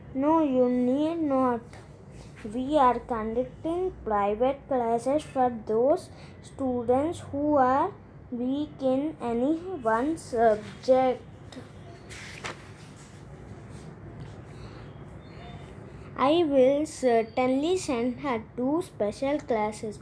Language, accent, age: English, Indian, 20-39